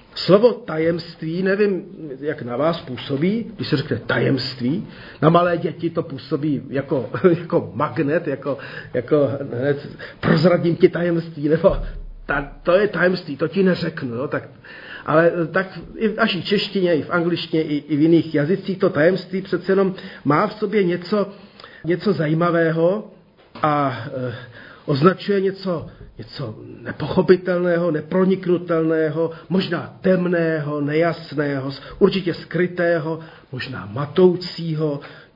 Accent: native